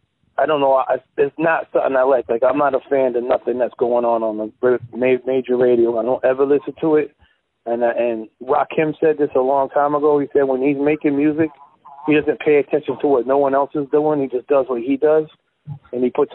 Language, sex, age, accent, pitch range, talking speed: English, male, 30-49, American, 130-160 Hz, 240 wpm